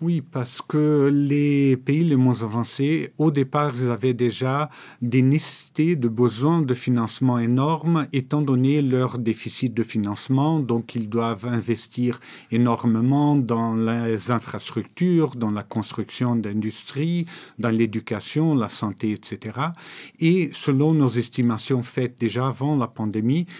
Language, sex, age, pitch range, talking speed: French, male, 50-69, 115-145 Hz, 130 wpm